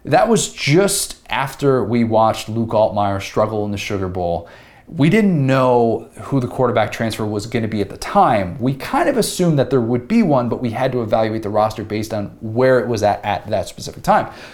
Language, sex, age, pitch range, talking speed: English, male, 30-49, 105-140 Hz, 220 wpm